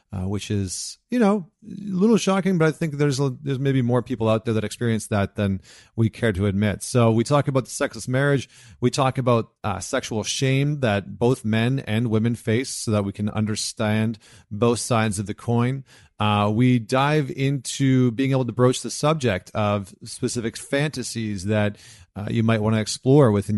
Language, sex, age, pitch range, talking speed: English, male, 40-59, 105-135 Hz, 195 wpm